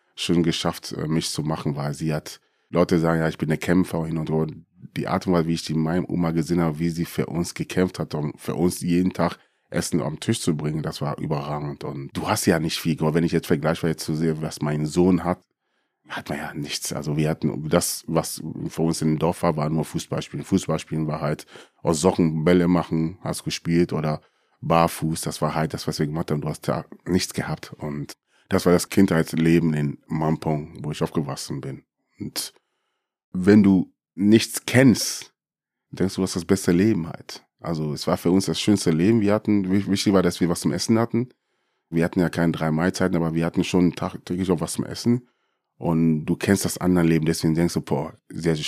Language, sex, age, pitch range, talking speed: German, male, 30-49, 80-90 Hz, 215 wpm